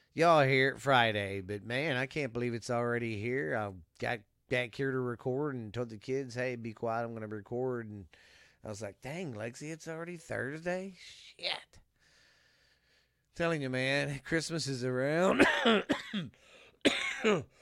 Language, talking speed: English, 155 wpm